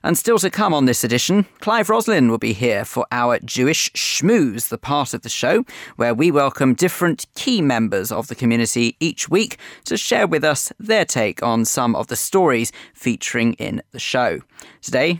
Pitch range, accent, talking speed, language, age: 120-185 Hz, British, 190 wpm, English, 40-59